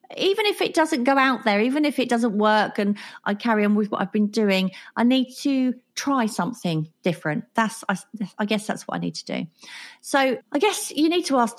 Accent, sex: British, female